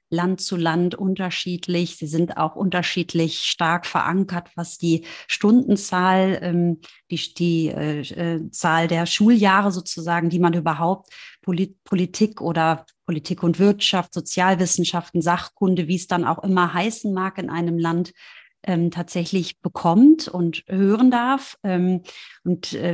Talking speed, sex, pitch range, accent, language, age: 120 wpm, female, 170-190 Hz, German, German, 30-49